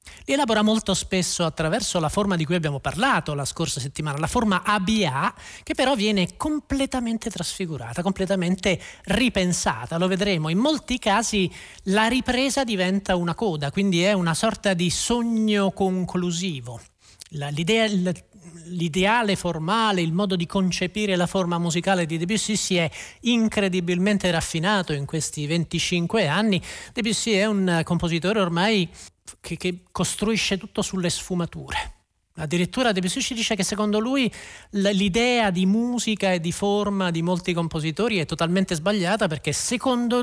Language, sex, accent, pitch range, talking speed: Italian, male, native, 170-210 Hz, 135 wpm